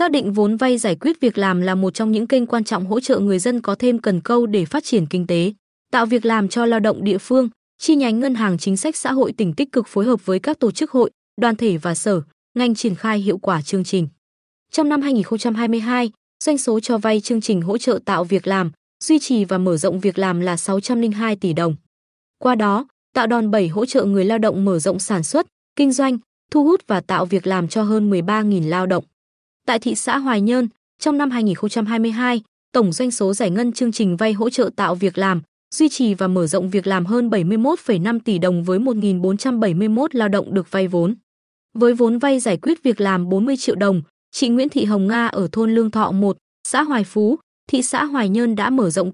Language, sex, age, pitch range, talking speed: Vietnamese, female, 20-39, 195-245 Hz, 225 wpm